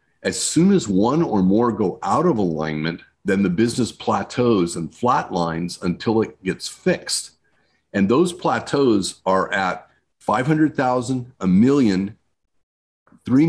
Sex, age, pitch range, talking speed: male, 50-69, 95-120 Hz, 130 wpm